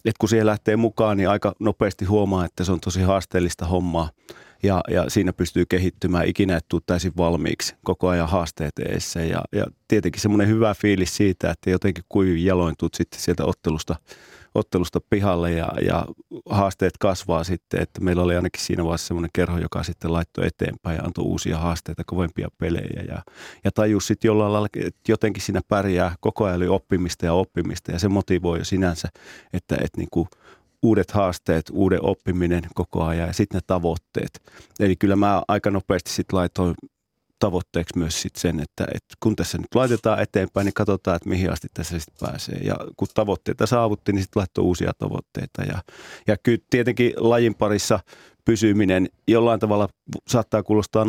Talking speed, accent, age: 170 wpm, native, 30-49